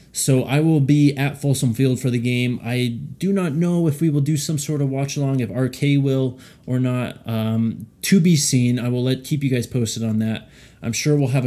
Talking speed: 230 wpm